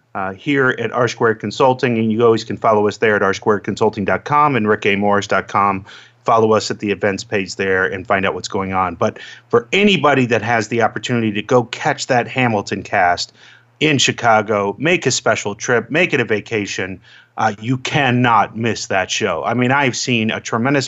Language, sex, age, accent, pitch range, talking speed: English, male, 30-49, American, 105-130 Hz, 185 wpm